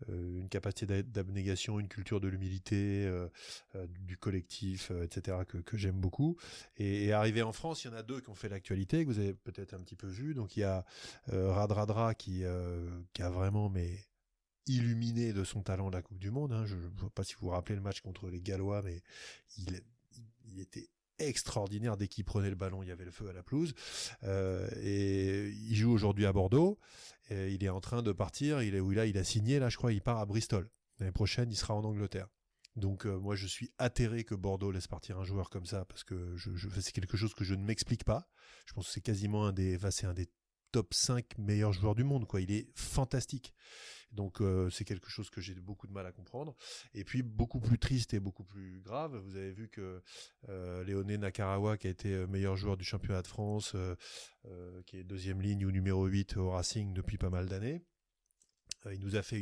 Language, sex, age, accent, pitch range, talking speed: French, male, 20-39, French, 95-110 Hz, 220 wpm